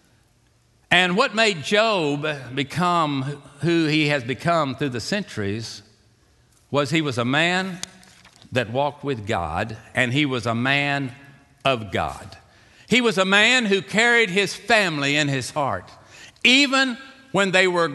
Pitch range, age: 115-170 Hz, 60-79